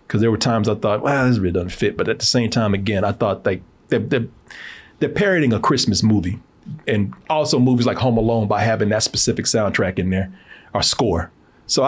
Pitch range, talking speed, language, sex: 105-145 Hz, 215 wpm, English, male